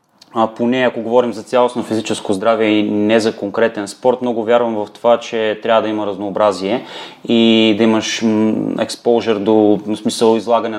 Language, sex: Bulgarian, male